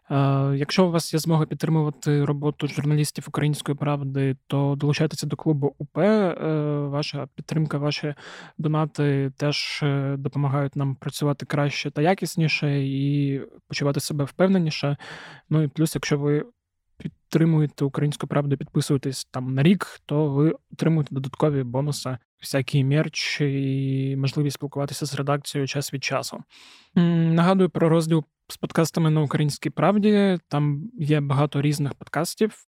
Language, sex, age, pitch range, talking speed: Ukrainian, male, 20-39, 140-160 Hz, 130 wpm